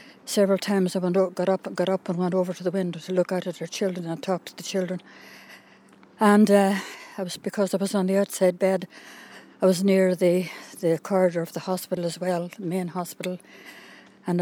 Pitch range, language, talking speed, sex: 170-190 Hz, English, 215 wpm, female